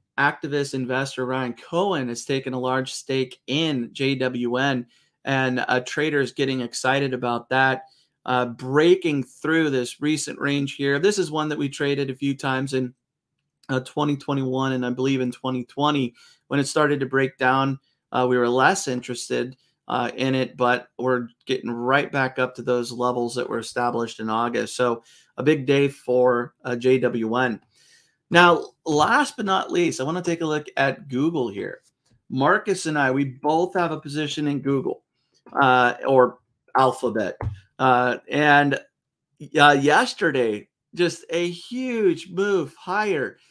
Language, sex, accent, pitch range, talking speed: English, male, American, 125-160 Hz, 155 wpm